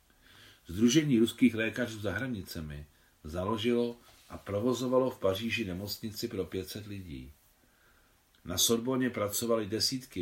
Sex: male